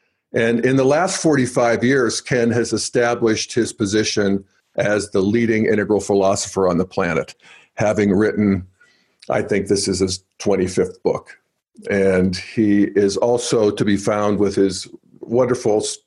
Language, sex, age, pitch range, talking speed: English, male, 50-69, 100-130 Hz, 140 wpm